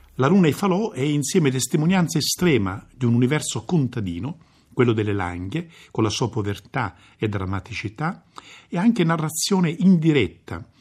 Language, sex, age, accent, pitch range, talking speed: Italian, male, 50-69, native, 105-160 Hz, 140 wpm